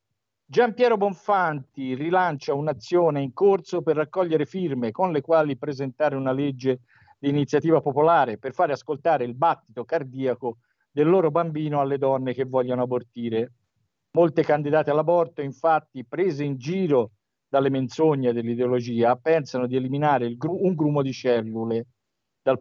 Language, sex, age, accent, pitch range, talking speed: Italian, male, 50-69, native, 130-175 Hz, 135 wpm